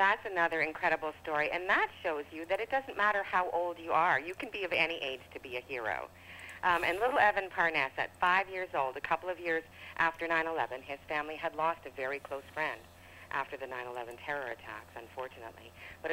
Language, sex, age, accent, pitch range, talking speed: English, female, 50-69, American, 140-185 Hz, 210 wpm